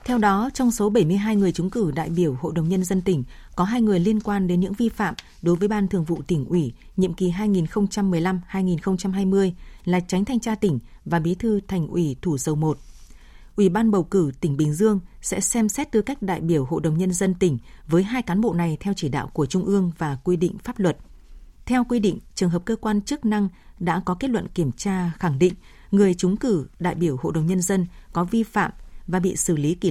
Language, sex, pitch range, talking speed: Vietnamese, female, 170-205 Hz, 235 wpm